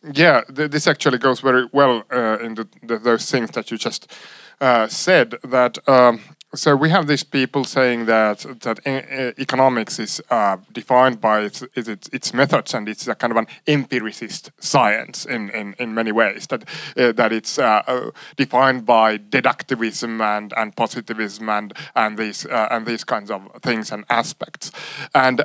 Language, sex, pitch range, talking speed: Finnish, male, 115-145 Hz, 170 wpm